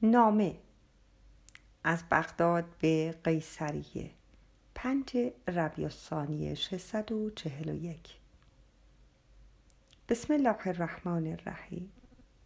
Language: Persian